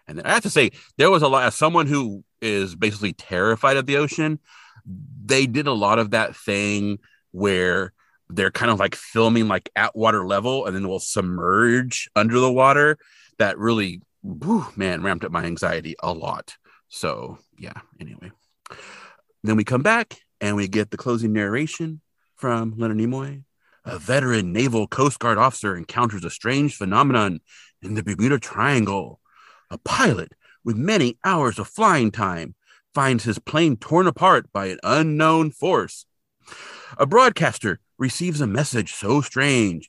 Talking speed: 160 wpm